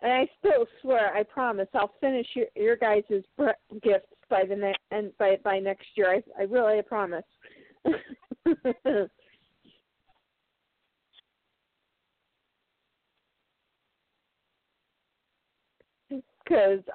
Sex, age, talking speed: female, 50-69, 90 wpm